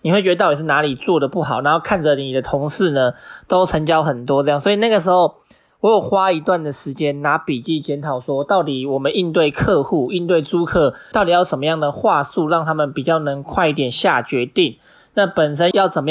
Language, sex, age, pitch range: Chinese, male, 20-39, 150-185 Hz